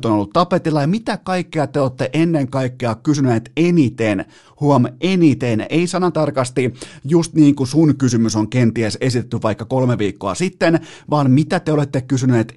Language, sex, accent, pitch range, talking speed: Finnish, male, native, 120-160 Hz, 160 wpm